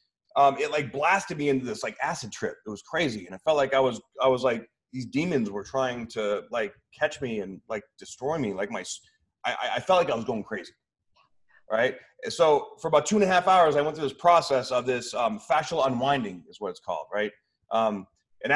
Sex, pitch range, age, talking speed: male, 125-185 Hz, 30-49, 225 wpm